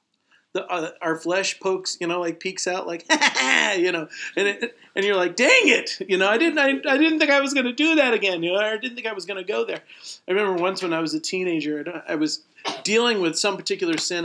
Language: English